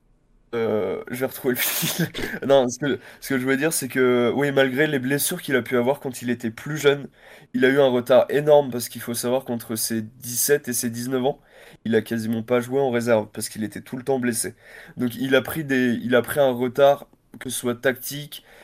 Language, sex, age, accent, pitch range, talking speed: French, male, 20-39, French, 120-145 Hz, 235 wpm